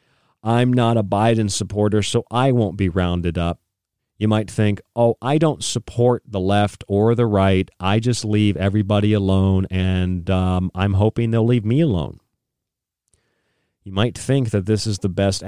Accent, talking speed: American, 170 wpm